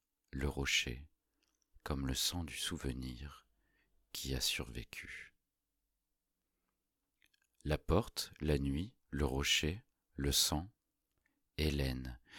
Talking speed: 90 wpm